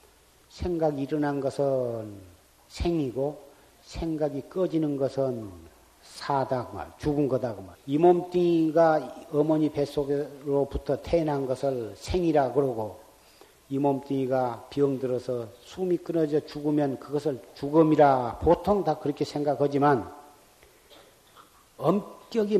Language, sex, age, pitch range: Korean, male, 40-59, 140-185 Hz